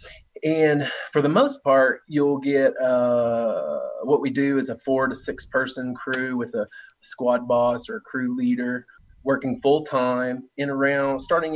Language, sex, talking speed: English, male, 165 wpm